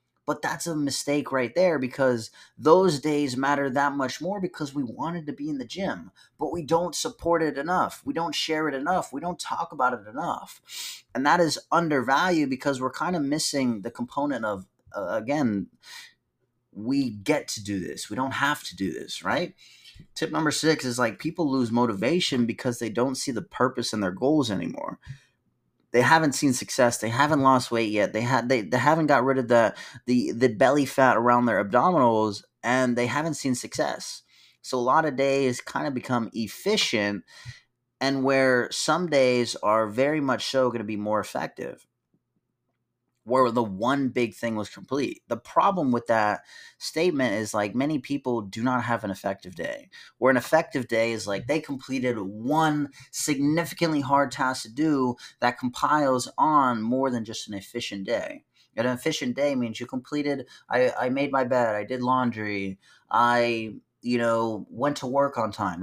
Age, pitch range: 30-49, 115-145 Hz